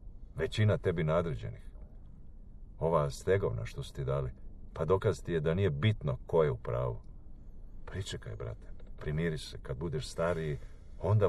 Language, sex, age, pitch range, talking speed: Croatian, male, 50-69, 70-105 Hz, 150 wpm